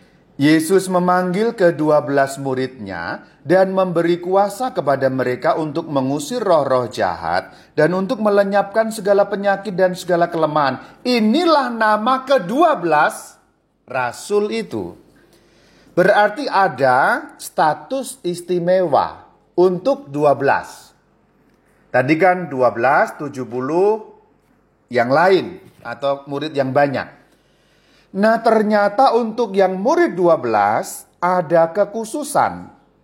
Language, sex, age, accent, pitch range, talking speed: Indonesian, male, 40-59, native, 155-235 Hz, 95 wpm